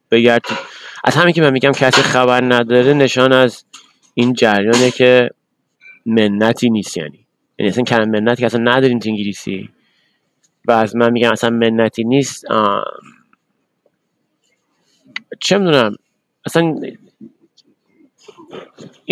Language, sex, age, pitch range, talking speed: Persian, male, 30-49, 110-130 Hz, 115 wpm